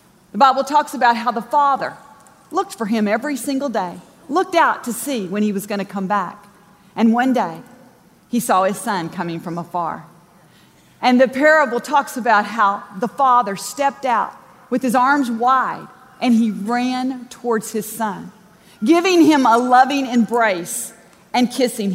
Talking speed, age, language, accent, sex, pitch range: 165 wpm, 40-59, English, American, female, 205-285 Hz